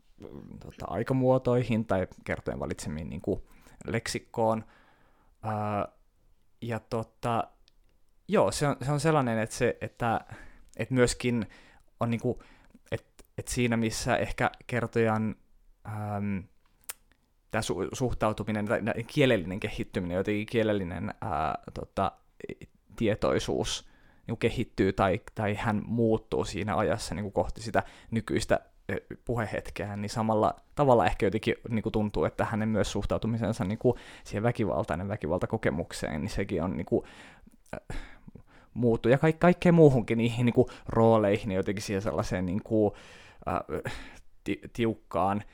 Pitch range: 100-115 Hz